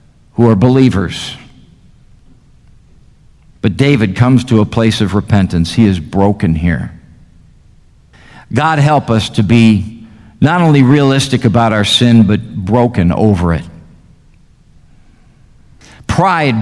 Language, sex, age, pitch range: English, male, 50-69, 110-150 Hz